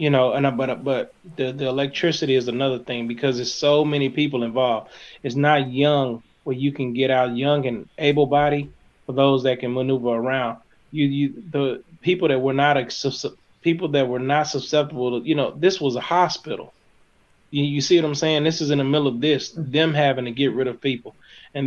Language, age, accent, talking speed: English, 20-39, American, 210 wpm